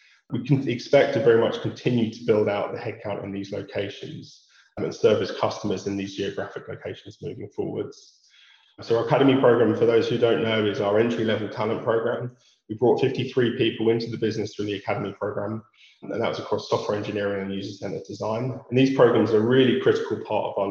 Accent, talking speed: British, 200 wpm